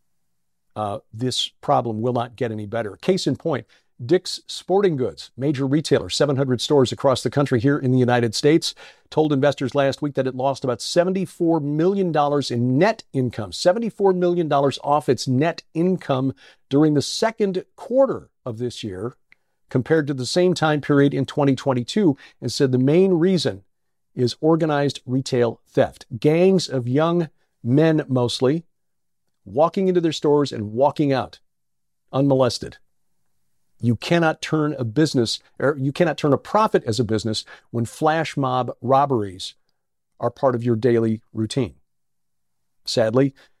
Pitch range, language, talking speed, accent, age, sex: 120-150 Hz, English, 145 wpm, American, 50-69, male